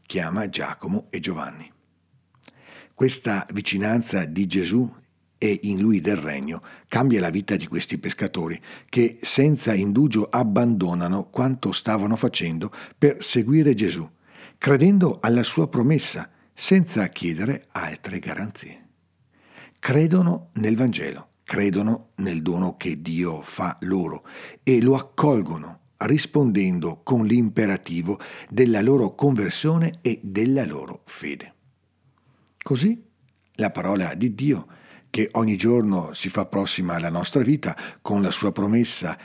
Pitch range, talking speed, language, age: 95-130 Hz, 120 wpm, Italian, 50-69